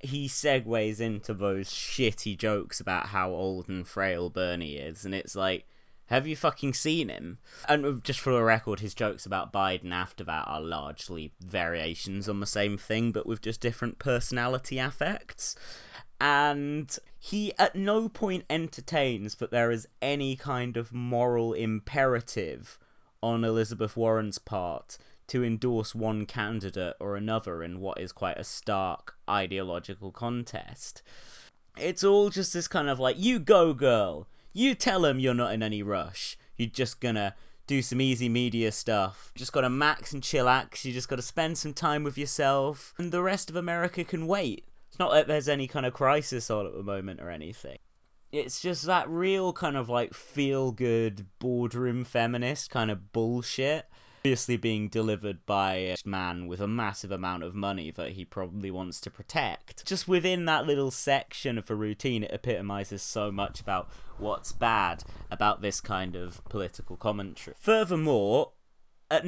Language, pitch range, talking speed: English, 100-140 Hz, 165 wpm